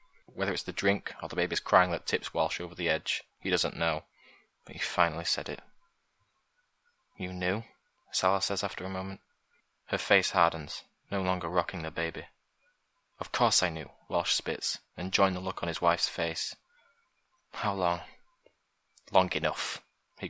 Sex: male